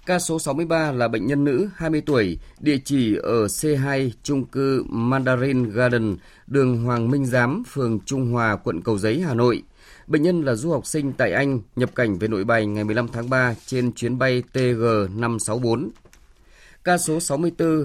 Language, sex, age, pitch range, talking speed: Vietnamese, male, 20-39, 115-140 Hz, 180 wpm